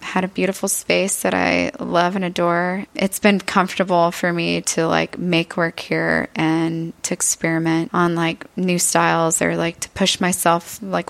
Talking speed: 175 wpm